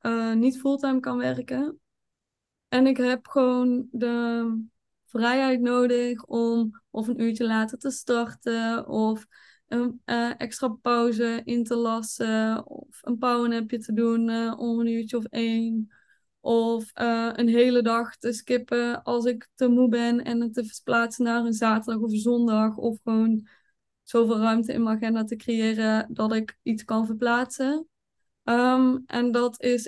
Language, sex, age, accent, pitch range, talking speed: Dutch, female, 20-39, Dutch, 225-245 Hz, 155 wpm